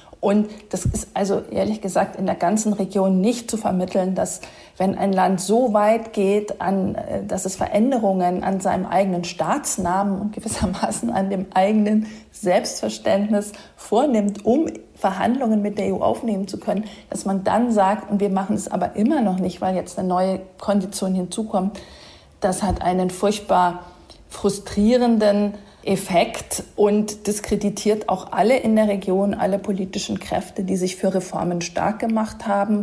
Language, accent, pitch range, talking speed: English, German, 185-215 Hz, 155 wpm